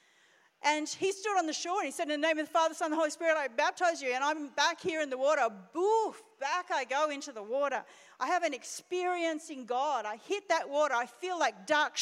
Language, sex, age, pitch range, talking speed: English, female, 40-59, 265-335 Hz, 255 wpm